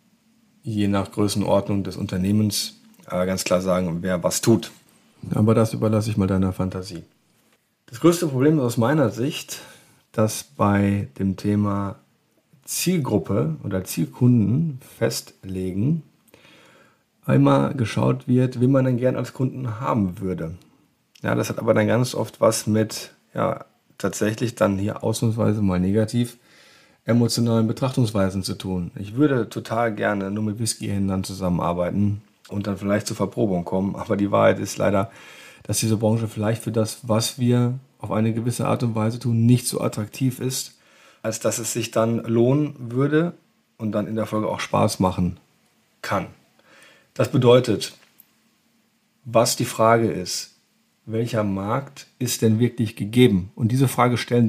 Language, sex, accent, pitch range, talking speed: German, male, German, 100-125 Hz, 150 wpm